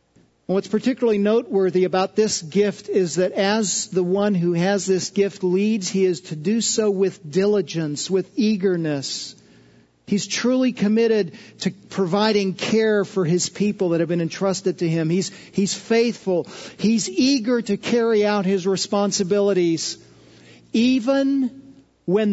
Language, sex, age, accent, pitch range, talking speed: English, male, 50-69, American, 165-210 Hz, 140 wpm